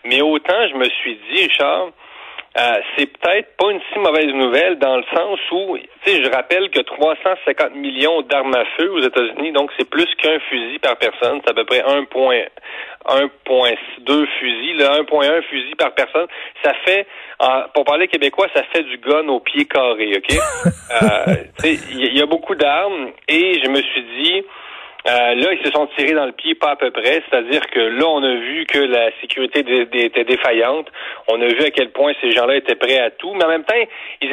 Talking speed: 205 wpm